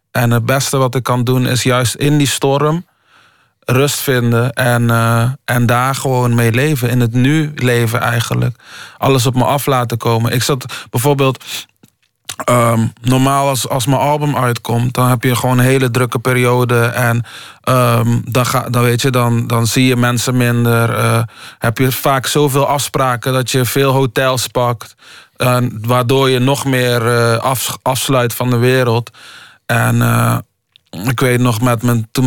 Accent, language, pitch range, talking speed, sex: Dutch, Dutch, 115-130 Hz, 160 wpm, male